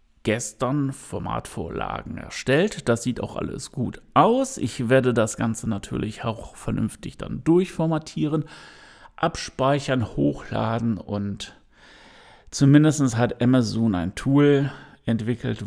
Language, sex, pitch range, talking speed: German, male, 110-130 Hz, 105 wpm